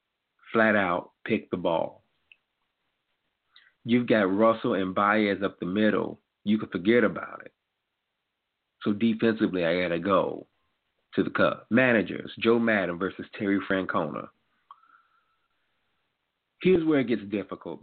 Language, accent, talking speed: English, American, 125 wpm